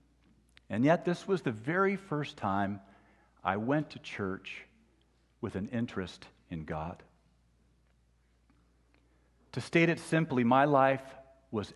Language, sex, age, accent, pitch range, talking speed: English, male, 50-69, American, 85-135 Hz, 120 wpm